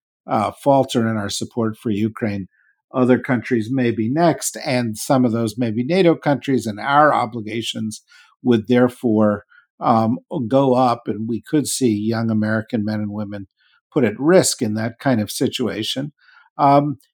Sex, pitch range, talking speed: male, 115-145 Hz, 160 wpm